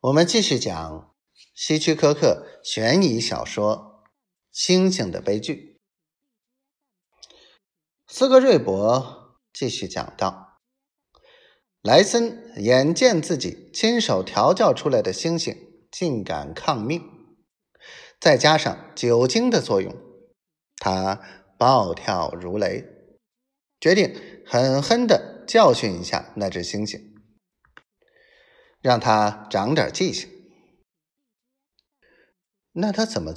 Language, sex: Chinese, male